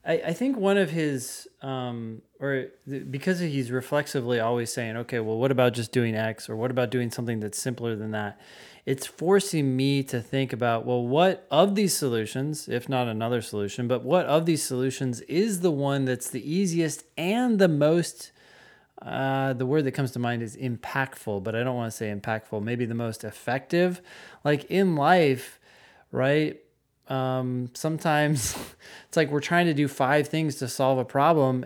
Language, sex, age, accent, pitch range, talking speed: English, male, 20-39, American, 125-160 Hz, 180 wpm